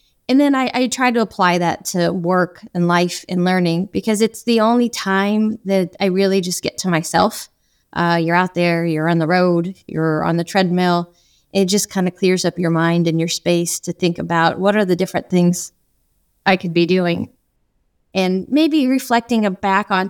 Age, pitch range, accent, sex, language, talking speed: 20-39, 175-220 Hz, American, female, English, 195 wpm